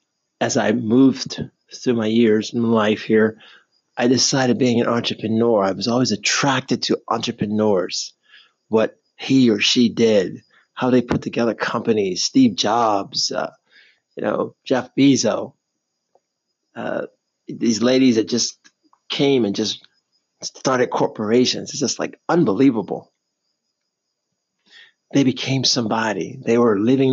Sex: male